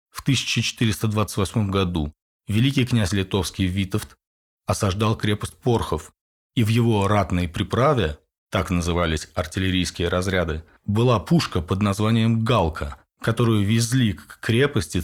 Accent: native